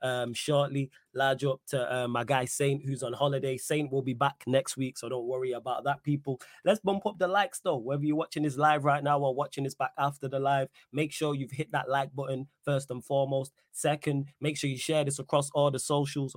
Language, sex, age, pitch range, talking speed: English, male, 20-39, 125-145 Hz, 235 wpm